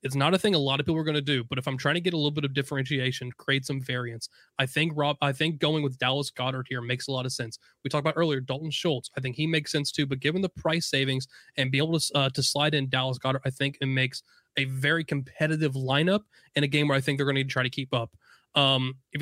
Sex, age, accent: male, 20-39, American